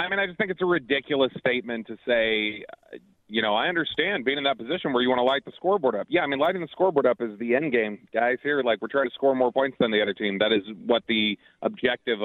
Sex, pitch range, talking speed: male, 115-140 Hz, 275 wpm